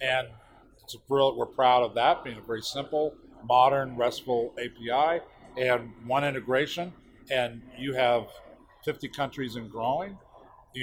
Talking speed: 145 wpm